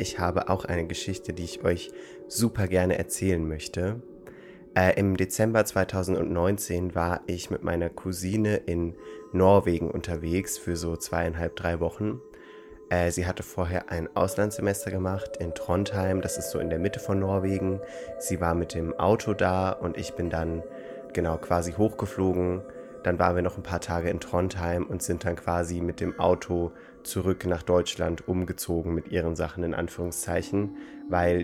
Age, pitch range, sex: 20-39, 85-95 Hz, male